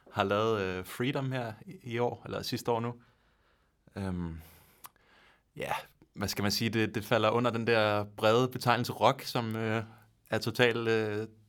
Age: 30-49